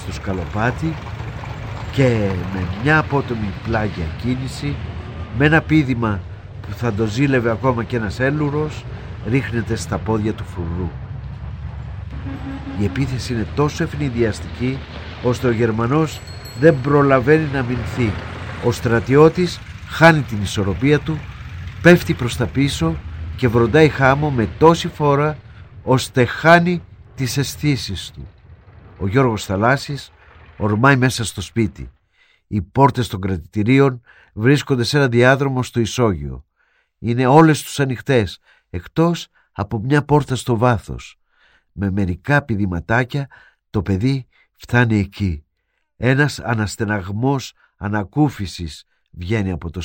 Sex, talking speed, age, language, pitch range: male, 115 wpm, 50-69, Greek, 95-135 Hz